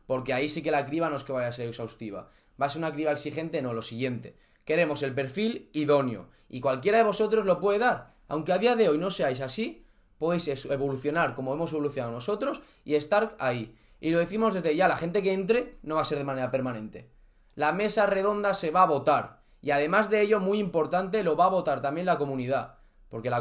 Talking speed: 225 wpm